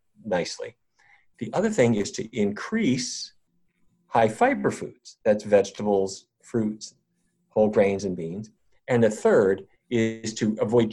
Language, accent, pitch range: English, American, 105-155 Hz